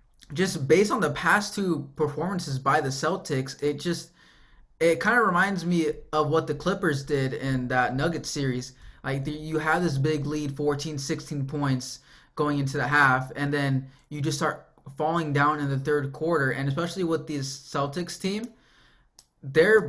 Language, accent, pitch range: English, American, 135-155 Hz